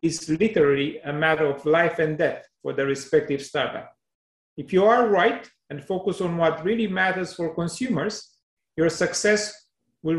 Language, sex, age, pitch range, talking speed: English, male, 40-59, 155-200 Hz, 160 wpm